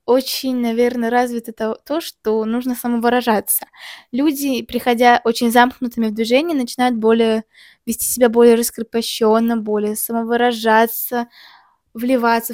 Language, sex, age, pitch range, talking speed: Russian, female, 20-39, 220-245 Hz, 105 wpm